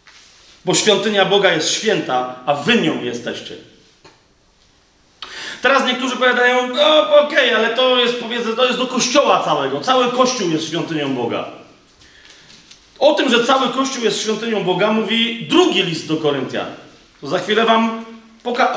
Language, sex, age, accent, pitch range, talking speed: Polish, male, 40-59, native, 185-240 Hz, 150 wpm